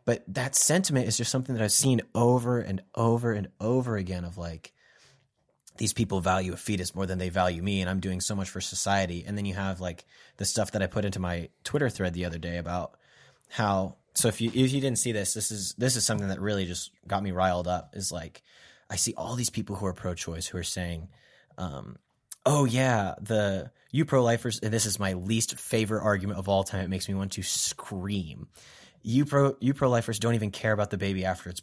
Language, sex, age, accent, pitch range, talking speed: English, male, 20-39, American, 95-120 Hz, 230 wpm